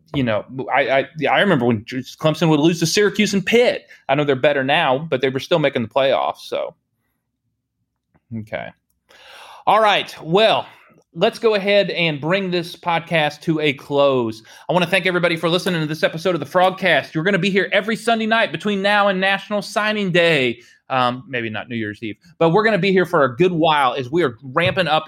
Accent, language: American, English